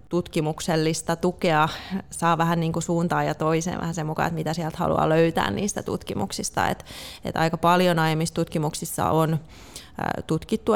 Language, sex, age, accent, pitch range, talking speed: Finnish, female, 20-39, native, 160-180 Hz, 145 wpm